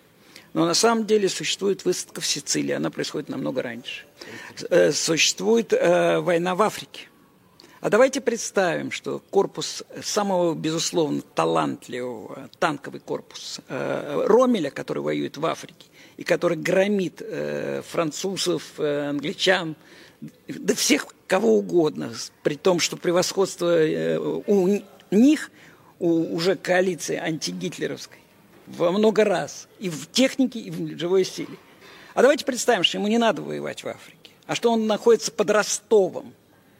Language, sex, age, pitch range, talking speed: Russian, male, 50-69, 165-220 Hz, 130 wpm